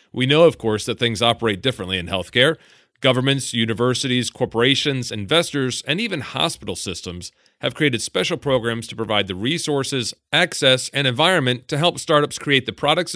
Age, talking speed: 40-59, 160 wpm